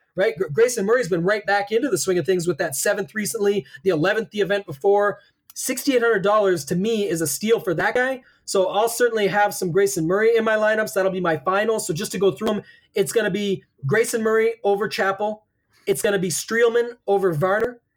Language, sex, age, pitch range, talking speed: English, male, 20-39, 185-220 Hz, 215 wpm